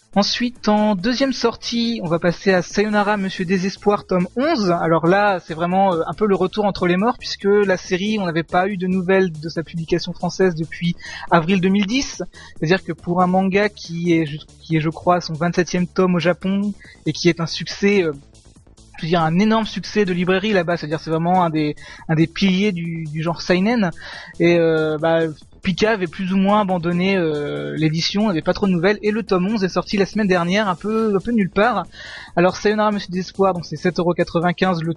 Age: 20-39